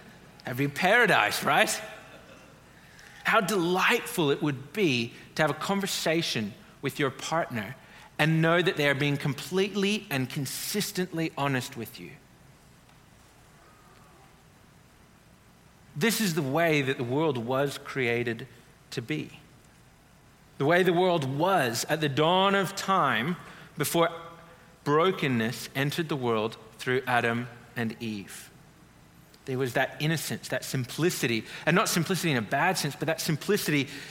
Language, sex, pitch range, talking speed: English, male, 130-170 Hz, 130 wpm